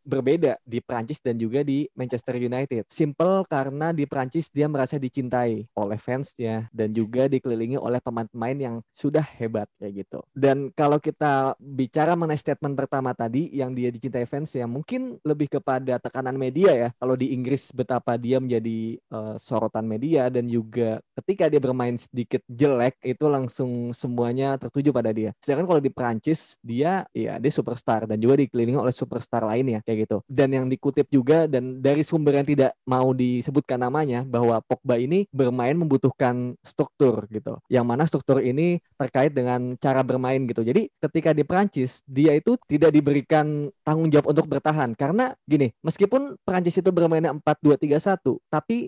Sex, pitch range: male, 120-150 Hz